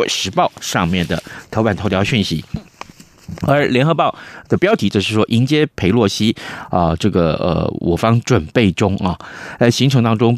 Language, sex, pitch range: Chinese, male, 95-130 Hz